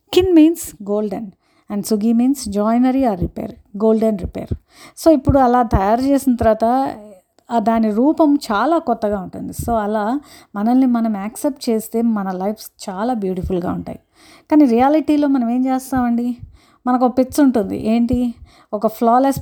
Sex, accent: female, native